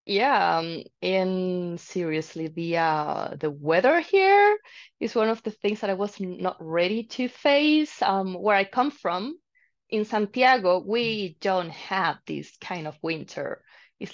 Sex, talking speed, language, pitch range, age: female, 155 wpm, English, 185-250 Hz, 20-39